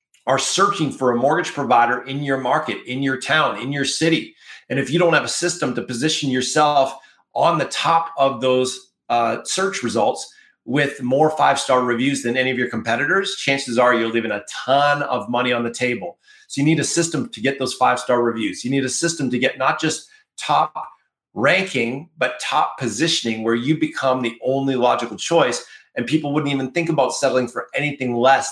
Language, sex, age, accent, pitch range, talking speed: English, male, 40-59, American, 125-155 Hz, 195 wpm